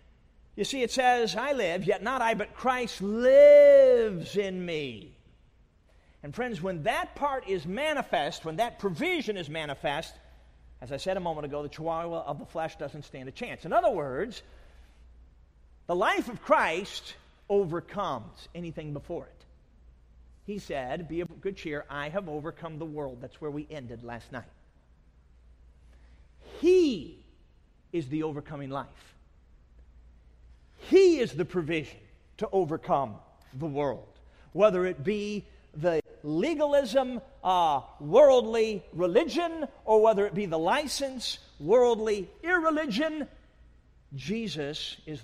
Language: English